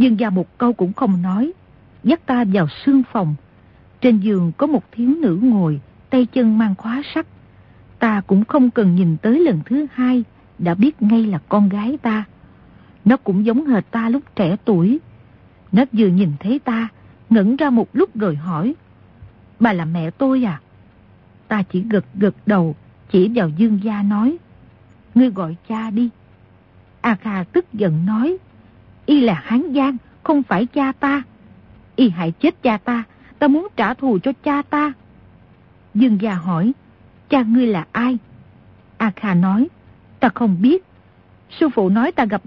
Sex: female